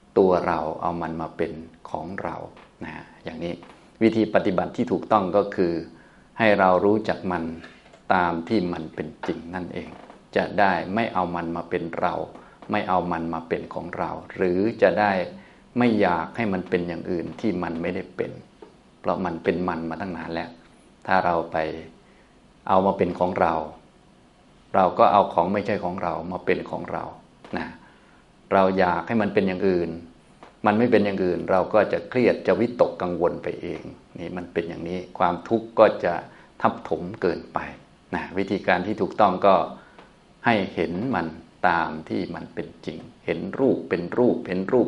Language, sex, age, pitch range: Thai, male, 20-39, 85-95 Hz